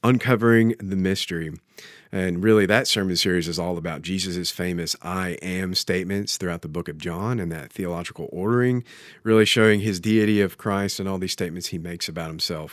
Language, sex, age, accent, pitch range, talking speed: English, male, 40-59, American, 95-115 Hz, 185 wpm